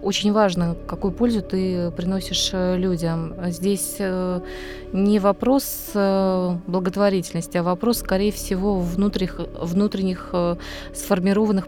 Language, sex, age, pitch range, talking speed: Russian, female, 20-39, 180-215 Hz, 90 wpm